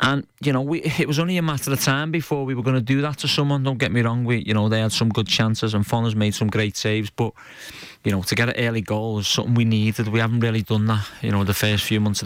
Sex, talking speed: male, 310 wpm